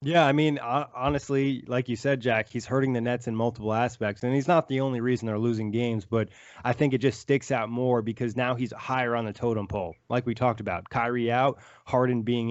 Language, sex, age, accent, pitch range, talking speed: English, male, 20-39, American, 110-130 Hz, 230 wpm